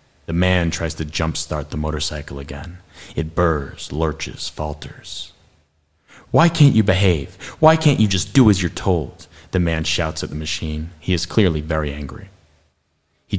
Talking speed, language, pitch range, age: 160 wpm, English, 75-90 Hz, 30-49